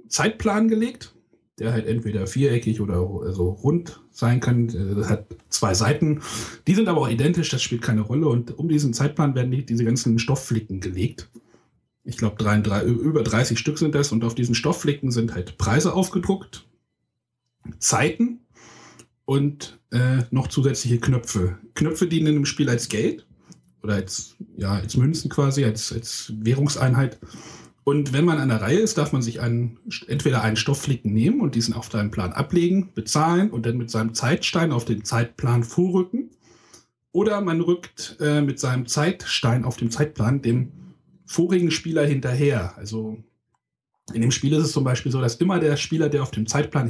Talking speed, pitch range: 170 wpm, 115-150 Hz